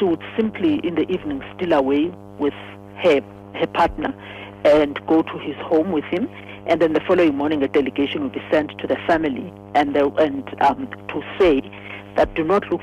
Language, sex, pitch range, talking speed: English, female, 100-165 Hz, 185 wpm